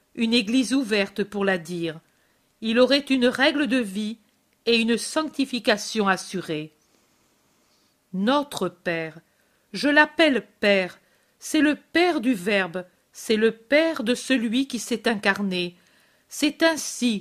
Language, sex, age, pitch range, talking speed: French, female, 50-69, 200-260 Hz, 125 wpm